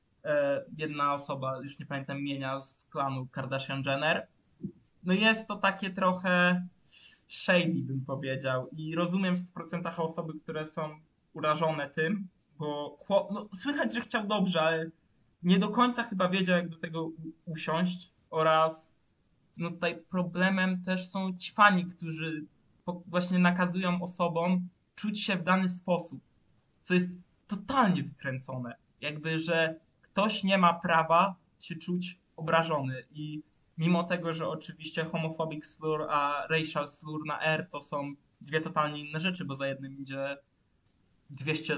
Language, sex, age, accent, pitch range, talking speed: Polish, male, 20-39, native, 145-180 Hz, 135 wpm